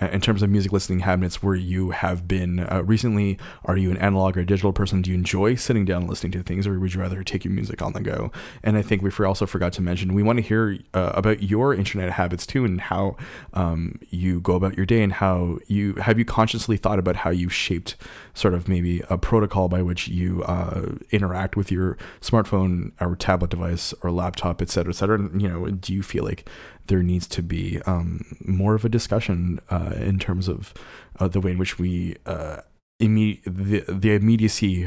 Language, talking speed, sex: English, 220 wpm, male